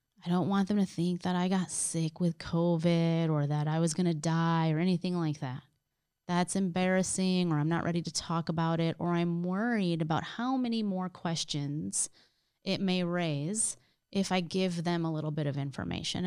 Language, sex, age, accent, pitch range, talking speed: English, female, 30-49, American, 160-200 Hz, 195 wpm